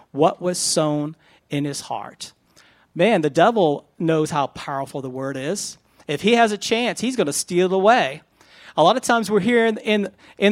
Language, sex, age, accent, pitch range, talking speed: English, male, 40-59, American, 180-250 Hz, 200 wpm